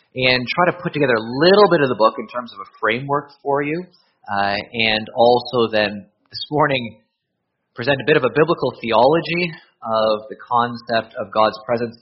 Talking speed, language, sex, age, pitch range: 185 wpm, English, male, 30-49, 120-160 Hz